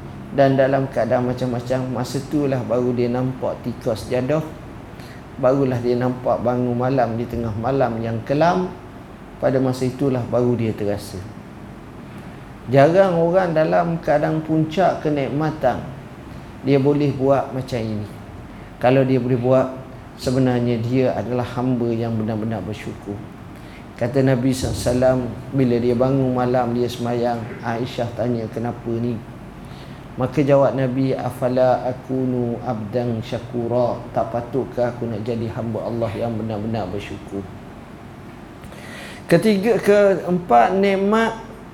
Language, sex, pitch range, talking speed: Italian, male, 120-155 Hz, 120 wpm